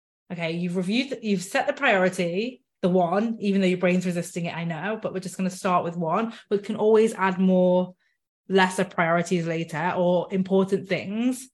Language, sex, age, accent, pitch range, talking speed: English, female, 20-39, British, 180-210 Hz, 185 wpm